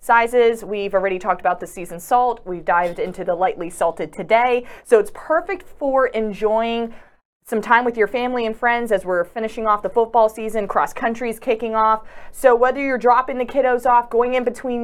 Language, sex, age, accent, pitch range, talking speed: English, female, 30-49, American, 220-275 Hz, 195 wpm